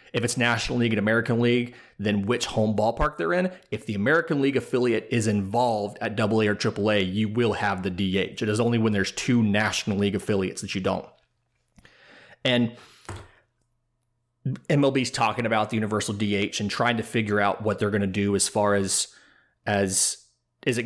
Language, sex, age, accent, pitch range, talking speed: English, male, 30-49, American, 100-120 Hz, 185 wpm